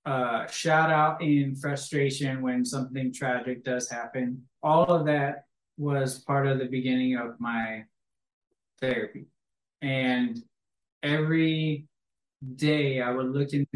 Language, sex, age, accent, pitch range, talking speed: English, male, 20-39, American, 125-145 Hz, 125 wpm